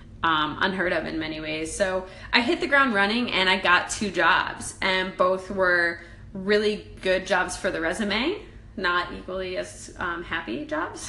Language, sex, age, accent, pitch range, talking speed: English, female, 20-39, American, 170-215 Hz, 175 wpm